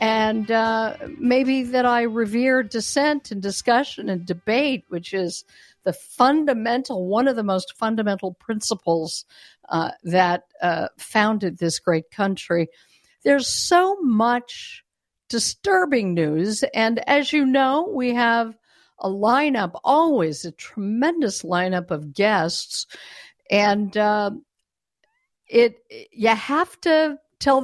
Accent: American